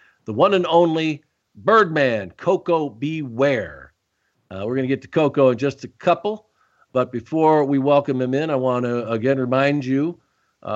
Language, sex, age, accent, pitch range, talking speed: English, male, 50-69, American, 115-145 Hz, 175 wpm